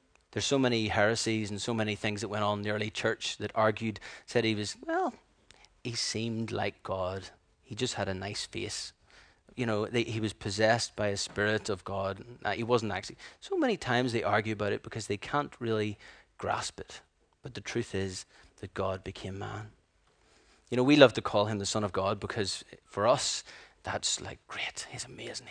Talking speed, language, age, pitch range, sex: 200 wpm, English, 30-49, 100-120 Hz, male